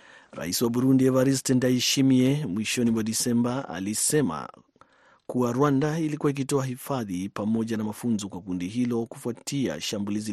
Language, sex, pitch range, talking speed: Swahili, male, 105-130 Hz, 130 wpm